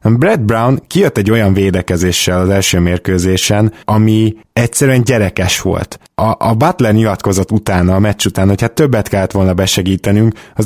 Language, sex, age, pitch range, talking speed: Hungarian, male, 20-39, 95-120 Hz, 160 wpm